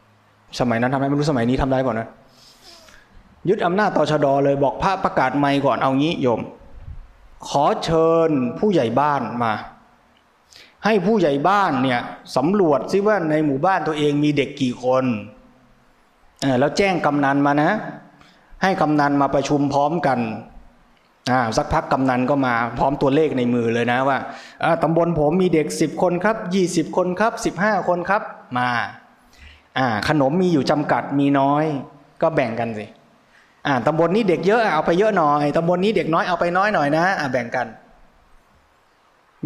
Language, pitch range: Thai, 135-180 Hz